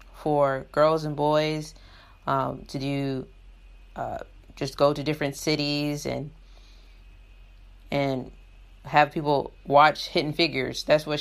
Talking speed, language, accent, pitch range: 120 wpm, English, American, 135-155 Hz